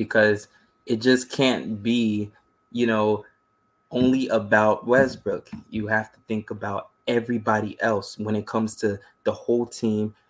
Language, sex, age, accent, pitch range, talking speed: English, male, 20-39, American, 105-115 Hz, 140 wpm